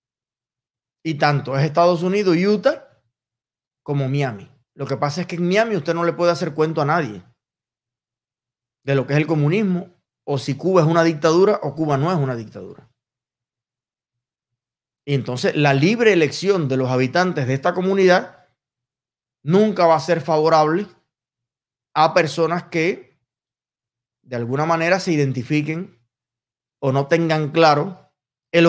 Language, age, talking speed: Spanish, 20-39, 150 wpm